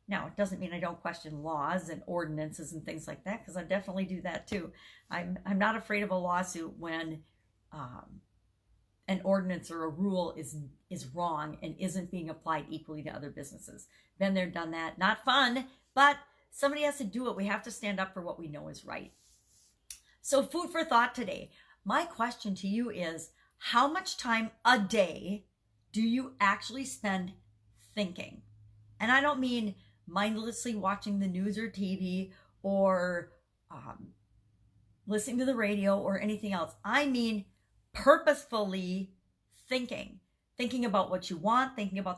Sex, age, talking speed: female, 50-69, 170 wpm